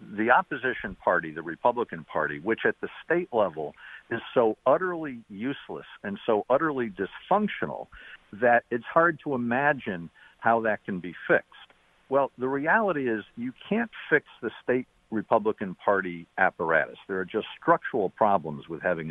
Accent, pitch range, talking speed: American, 115-165 Hz, 150 wpm